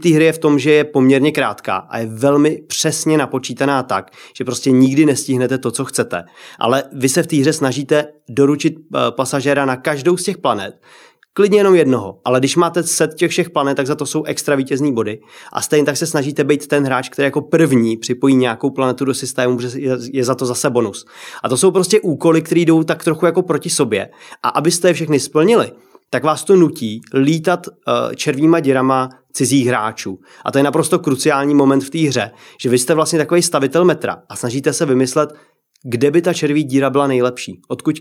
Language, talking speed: Czech, 200 wpm